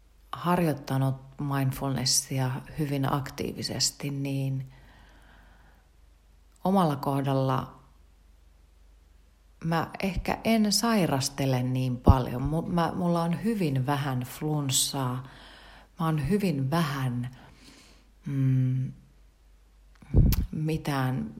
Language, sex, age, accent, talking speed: Finnish, female, 40-59, native, 65 wpm